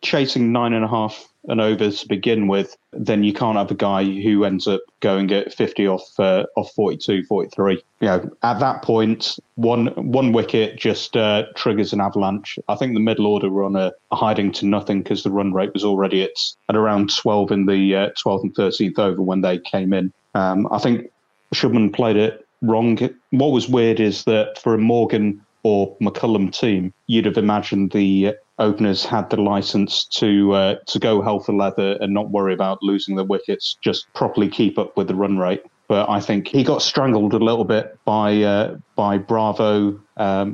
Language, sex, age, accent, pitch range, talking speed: English, male, 30-49, British, 95-110 Hz, 200 wpm